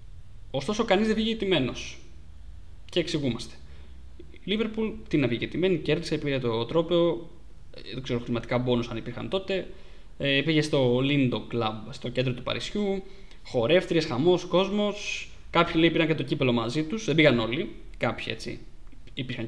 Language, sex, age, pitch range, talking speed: Greek, male, 20-39, 120-165 Hz, 155 wpm